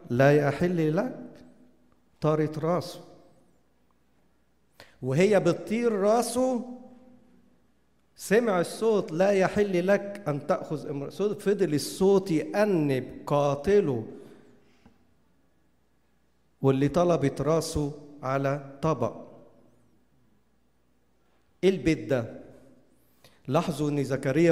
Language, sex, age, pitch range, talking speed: English, male, 50-69, 140-170 Hz, 75 wpm